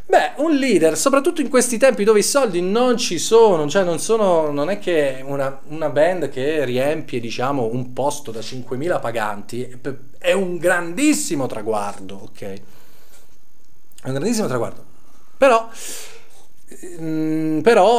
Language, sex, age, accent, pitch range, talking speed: Italian, male, 40-59, native, 130-190 Hz, 135 wpm